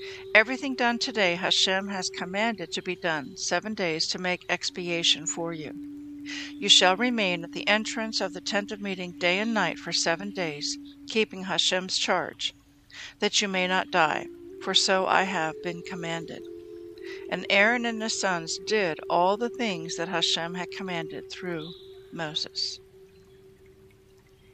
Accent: American